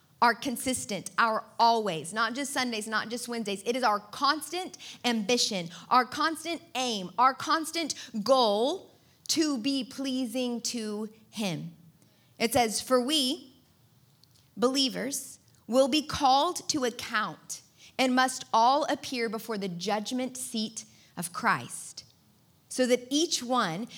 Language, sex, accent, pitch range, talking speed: English, female, American, 200-260 Hz, 125 wpm